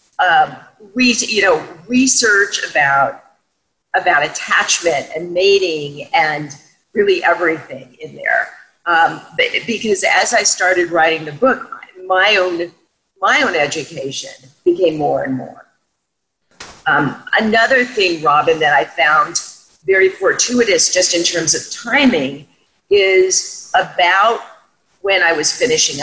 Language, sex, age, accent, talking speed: English, female, 40-59, American, 120 wpm